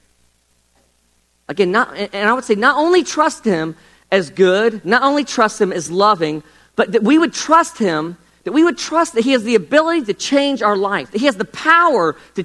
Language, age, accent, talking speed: English, 40-59, American, 205 wpm